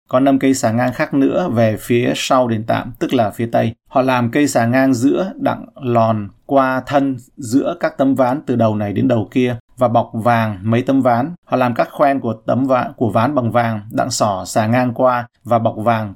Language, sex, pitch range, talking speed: Vietnamese, male, 110-130 Hz, 225 wpm